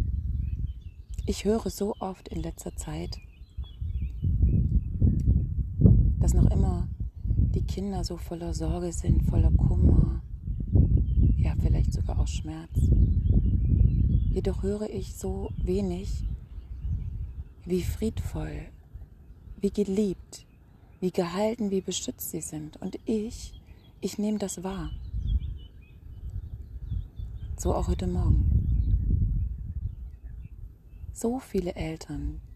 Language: German